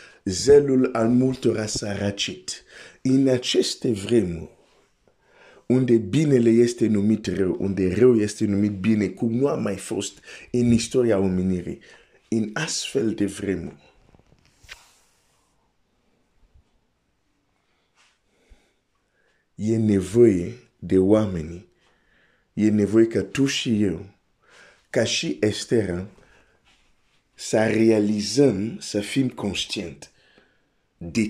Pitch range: 100-125 Hz